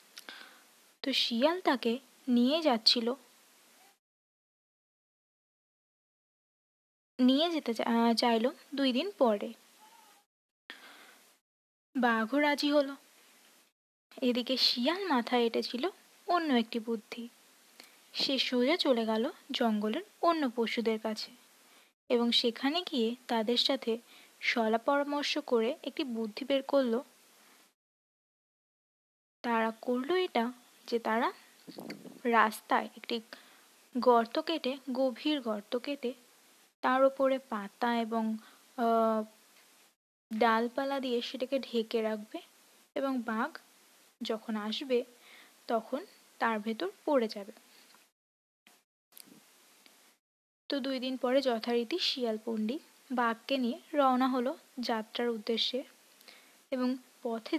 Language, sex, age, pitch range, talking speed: Hindi, female, 20-39, 230-275 Hz, 55 wpm